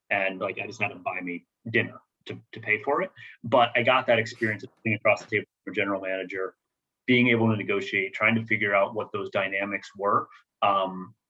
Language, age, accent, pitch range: English, 30-49, American, 100-120 Hz